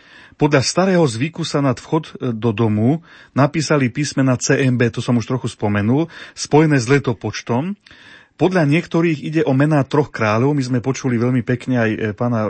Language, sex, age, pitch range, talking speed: Slovak, male, 30-49, 125-145 Hz, 165 wpm